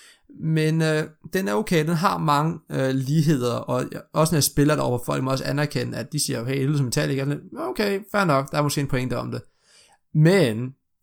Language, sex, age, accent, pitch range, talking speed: Danish, male, 20-39, native, 135-160 Hz, 230 wpm